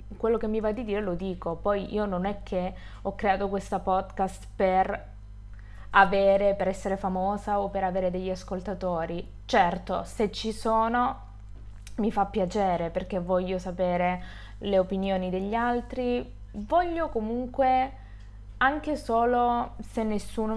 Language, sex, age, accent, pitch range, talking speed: Italian, female, 20-39, native, 180-225 Hz, 135 wpm